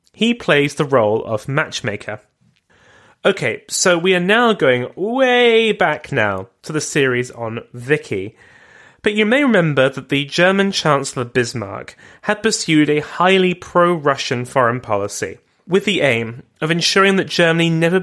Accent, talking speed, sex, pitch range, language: British, 145 wpm, male, 120-175 Hz, English